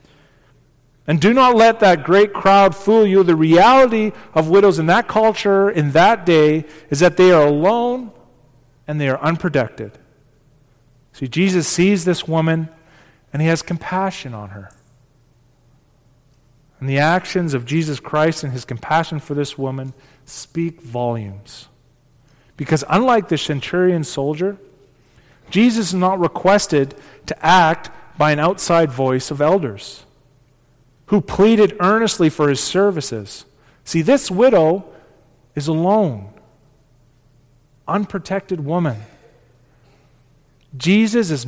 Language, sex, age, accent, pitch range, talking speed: English, male, 40-59, American, 130-195 Hz, 125 wpm